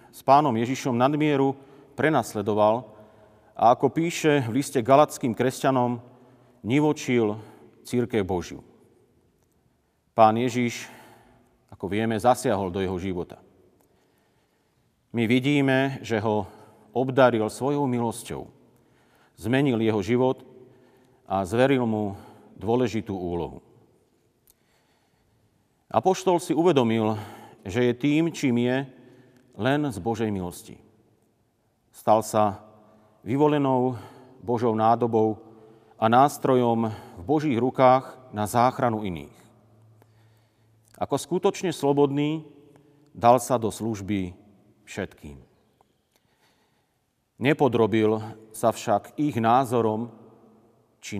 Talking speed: 90 wpm